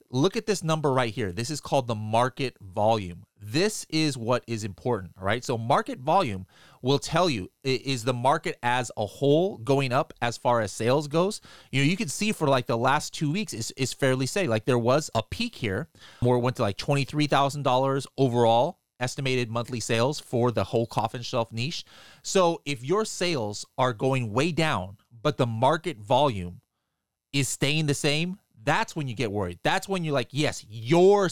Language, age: English, 30-49